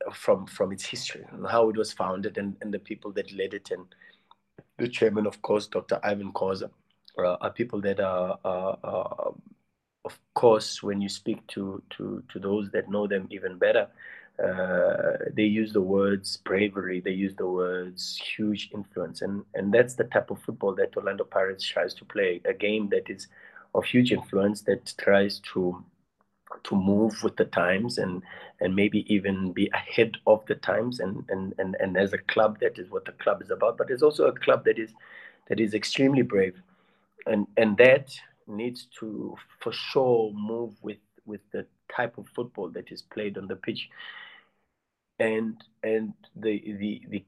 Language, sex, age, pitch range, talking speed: English, male, 30-49, 100-135 Hz, 185 wpm